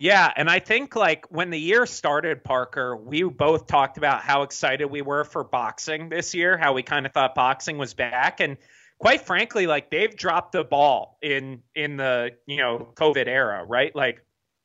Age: 30-49